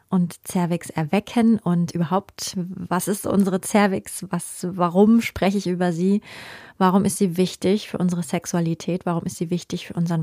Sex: female